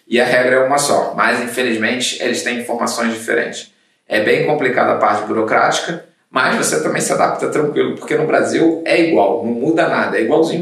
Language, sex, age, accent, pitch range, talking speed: Portuguese, male, 20-39, Brazilian, 115-145 Hz, 190 wpm